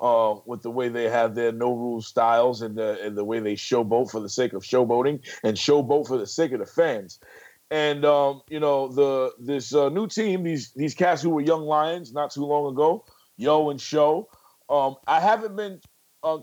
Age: 30-49